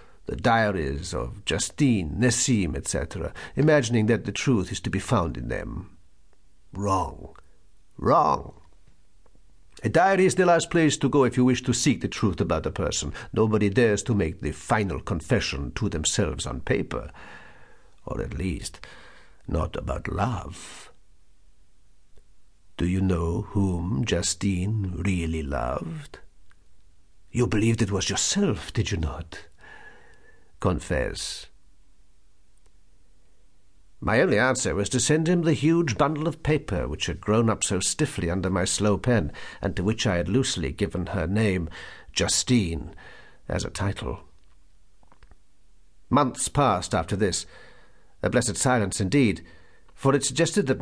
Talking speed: 135 wpm